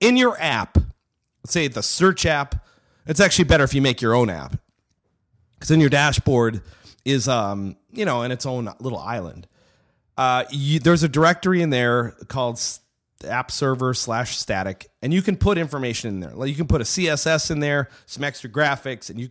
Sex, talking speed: male, 195 wpm